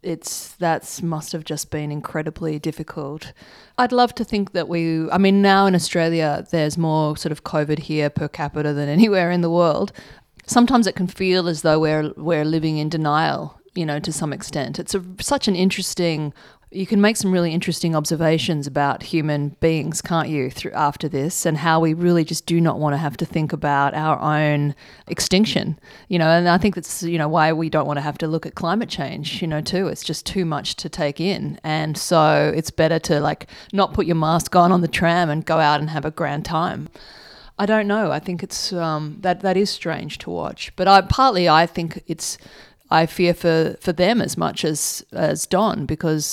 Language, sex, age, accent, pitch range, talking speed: English, female, 30-49, Australian, 155-185 Hz, 215 wpm